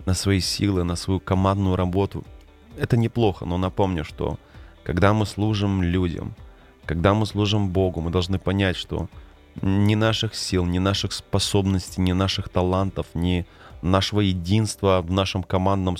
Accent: native